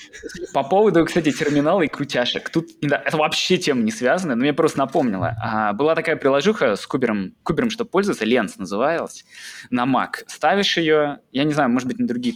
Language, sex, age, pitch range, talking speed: Russian, male, 20-39, 145-230 Hz, 185 wpm